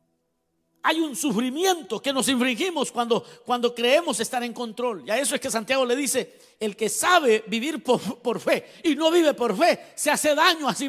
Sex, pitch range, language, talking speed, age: male, 215-285 Hz, Spanish, 205 wpm, 50-69